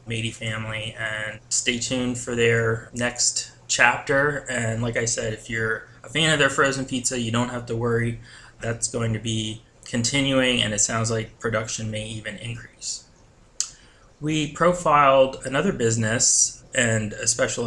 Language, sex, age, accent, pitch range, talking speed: English, male, 20-39, American, 115-125 Hz, 155 wpm